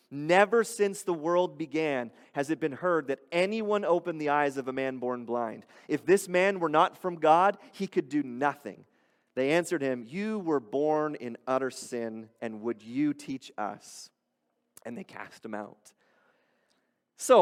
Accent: American